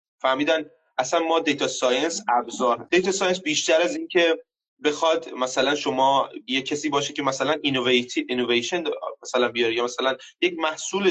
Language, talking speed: Persian, 145 wpm